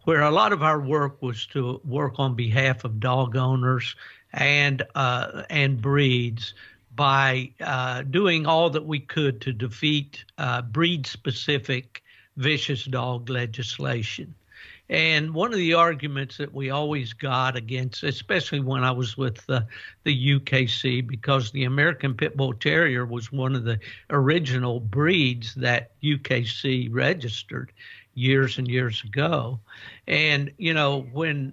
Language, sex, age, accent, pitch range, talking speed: English, male, 60-79, American, 125-145 Hz, 140 wpm